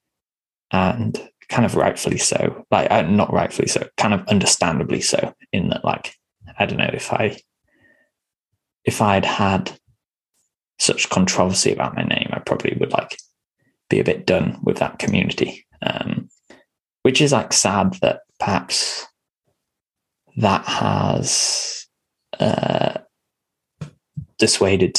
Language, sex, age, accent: English, male, 10-29, British